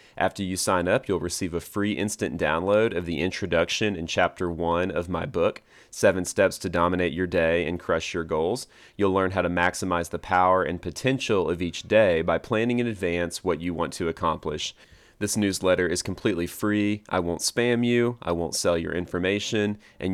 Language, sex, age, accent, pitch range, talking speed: English, male, 30-49, American, 85-100 Hz, 195 wpm